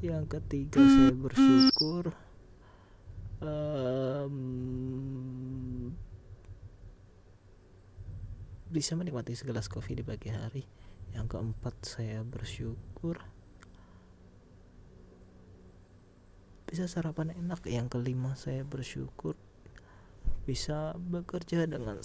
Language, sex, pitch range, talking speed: Indonesian, male, 95-135 Hz, 70 wpm